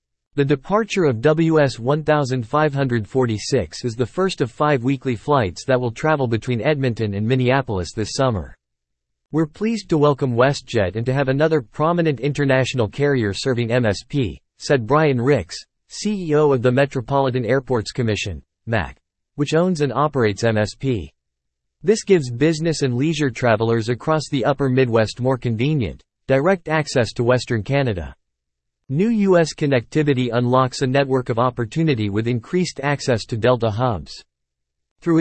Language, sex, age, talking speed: English, male, 40-59, 140 wpm